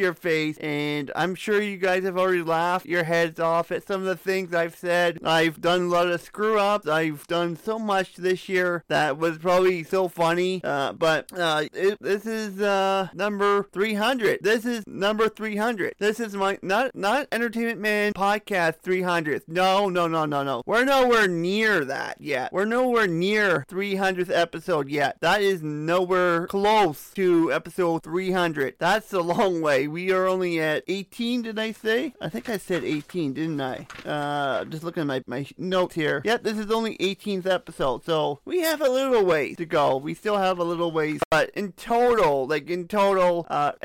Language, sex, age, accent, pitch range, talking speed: English, male, 30-49, American, 165-200 Hz, 185 wpm